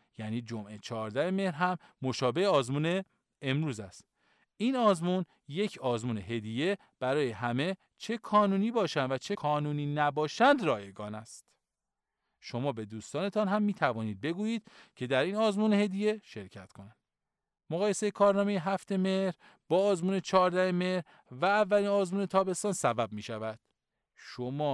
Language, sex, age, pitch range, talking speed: Persian, male, 40-59, 120-195 Hz, 130 wpm